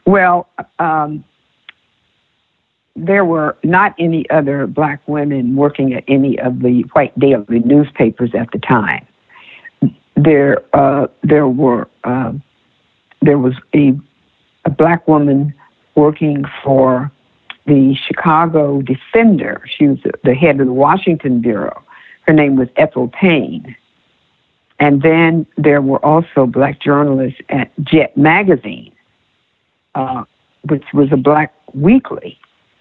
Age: 60-79